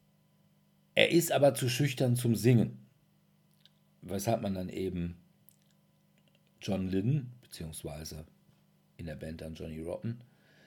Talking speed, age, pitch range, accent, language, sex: 110 wpm, 50-69, 95-135 Hz, German, German, male